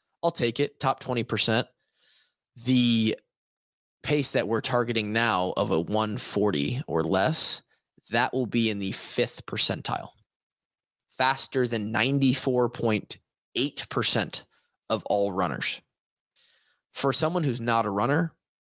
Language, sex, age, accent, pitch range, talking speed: English, male, 20-39, American, 110-135 Hz, 130 wpm